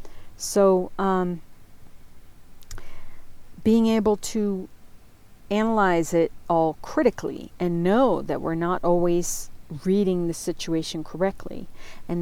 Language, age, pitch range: English, 50-69, 165-225 Hz